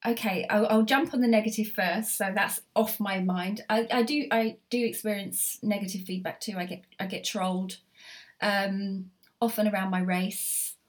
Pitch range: 175-205 Hz